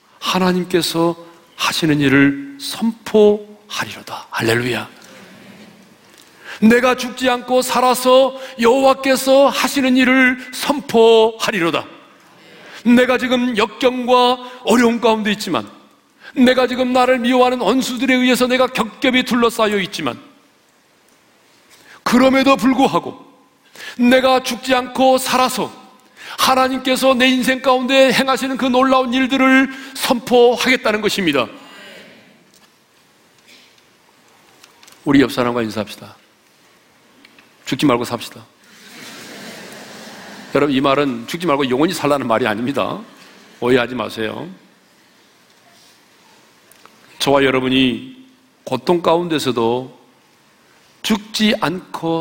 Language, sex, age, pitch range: Korean, male, 40-59, 165-255 Hz